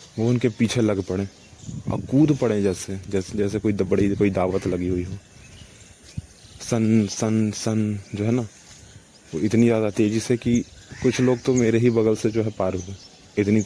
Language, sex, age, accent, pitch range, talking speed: Hindi, male, 20-39, native, 100-115 Hz, 185 wpm